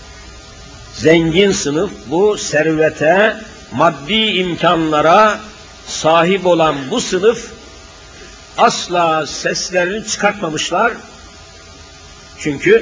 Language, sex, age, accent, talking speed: Turkish, male, 60-79, native, 65 wpm